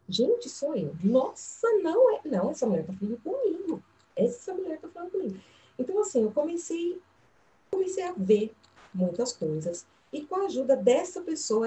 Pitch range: 205-335 Hz